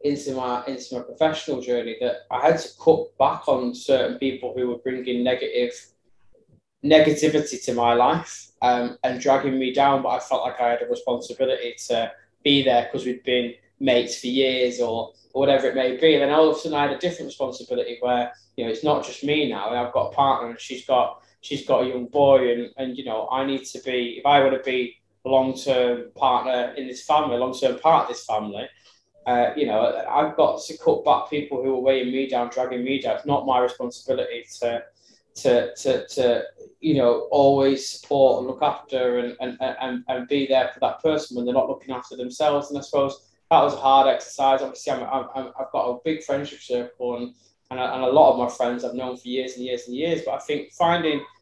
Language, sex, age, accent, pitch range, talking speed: English, male, 10-29, British, 125-145 Hz, 220 wpm